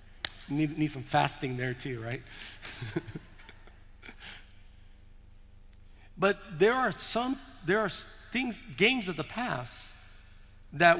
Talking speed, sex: 105 wpm, male